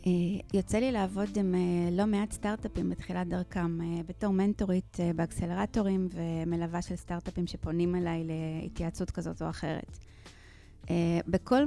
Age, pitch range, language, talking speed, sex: 30-49, 180-230 Hz, Hebrew, 115 wpm, female